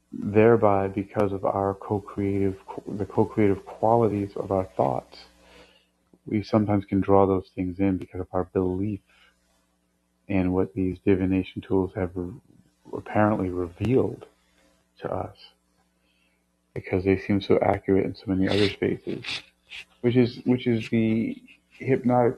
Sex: male